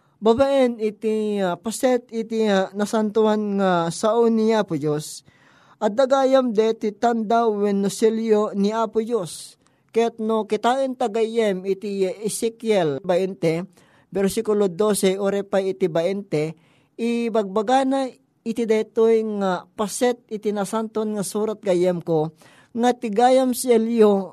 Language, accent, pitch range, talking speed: Filipino, native, 195-235 Hz, 120 wpm